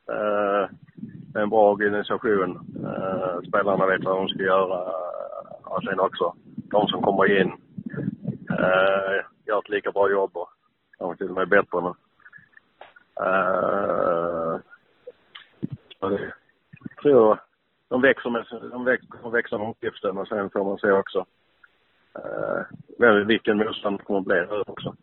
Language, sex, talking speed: Swedish, male, 105 wpm